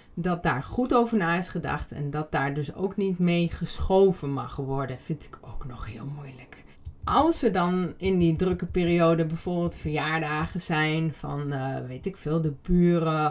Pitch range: 155-200 Hz